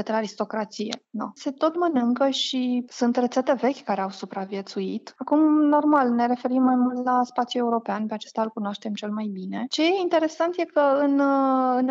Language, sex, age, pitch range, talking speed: Romanian, female, 20-39, 220-255 Hz, 175 wpm